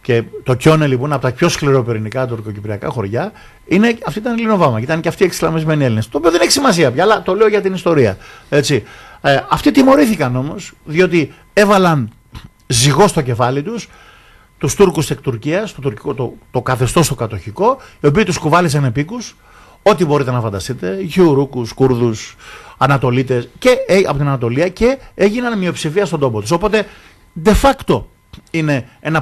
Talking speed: 160 wpm